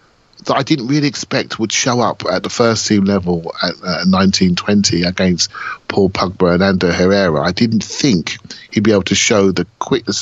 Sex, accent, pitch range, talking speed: male, British, 95-120 Hz, 190 wpm